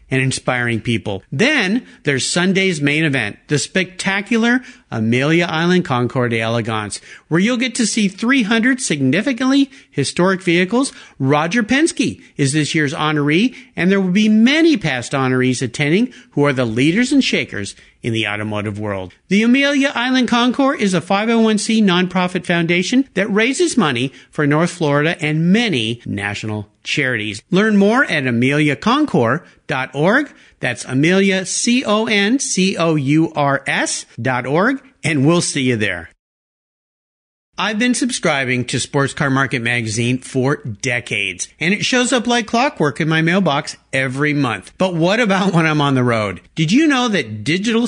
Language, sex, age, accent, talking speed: English, male, 50-69, American, 140 wpm